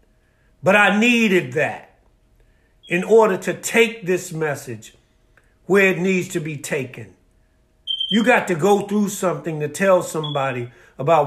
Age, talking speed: 50-69, 140 wpm